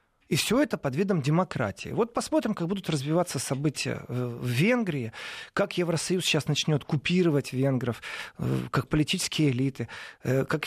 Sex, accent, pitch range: male, native, 140-195 Hz